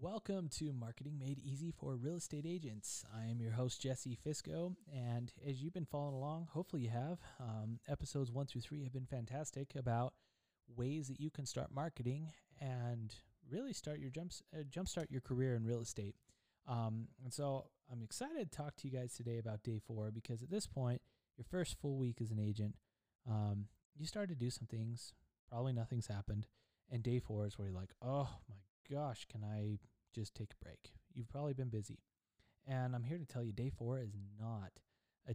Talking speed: 200 wpm